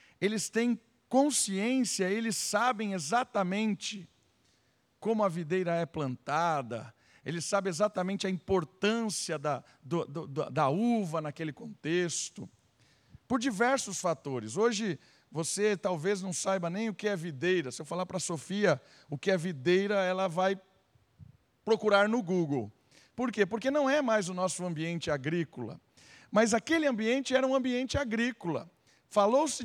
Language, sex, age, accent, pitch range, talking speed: Portuguese, male, 50-69, Brazilian, 160-220 Hz, 135 wpm